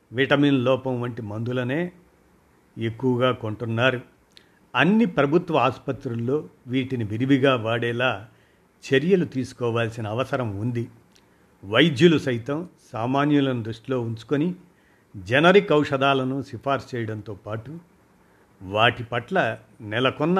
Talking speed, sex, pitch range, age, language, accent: 85 wpm, male, 115-145 Hz, 50-69, Telugu, native